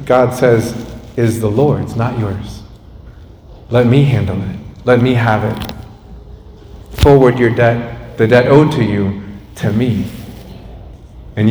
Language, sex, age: English, male, 40-59